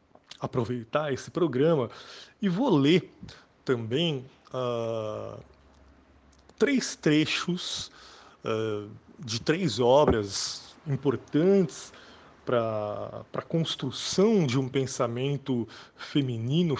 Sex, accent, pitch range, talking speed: male, Brazilian, 115-140 Hz, 70 wpm